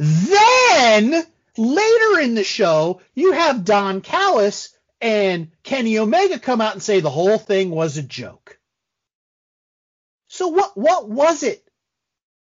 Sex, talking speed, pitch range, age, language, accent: male, 130 wpm, 180-270 Hz, 30-49, English, American